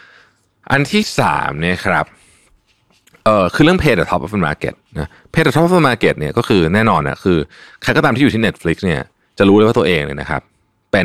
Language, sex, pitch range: Thai, male, 90-120 Hz